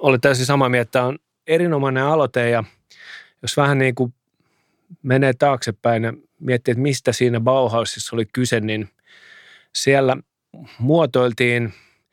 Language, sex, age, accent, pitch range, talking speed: Finnish, male, 30-49, native, 115-140 Hz, 135 wpm